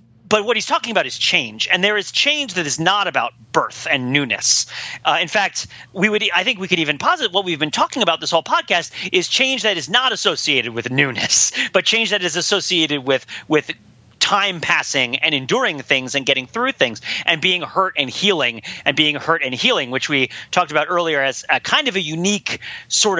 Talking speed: 220 wpm